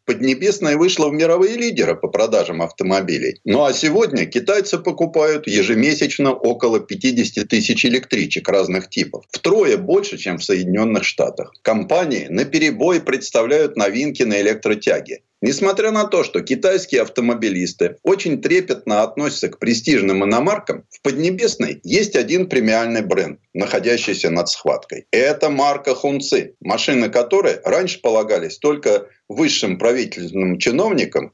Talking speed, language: 125 wpm, Russian